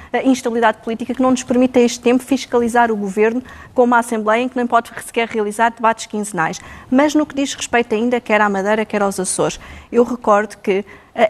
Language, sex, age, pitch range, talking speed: Portuguese, female, 20-39, 210-250 Hz, 205 wpm